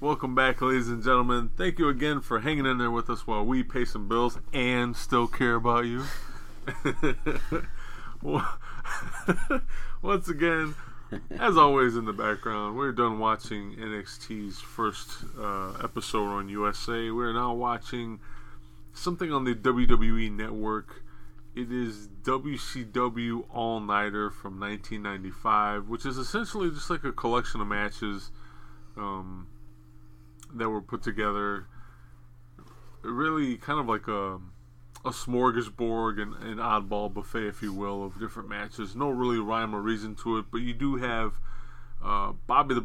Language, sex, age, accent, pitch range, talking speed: English, male, 20-39, American, 105-125 Hz, 140 wpm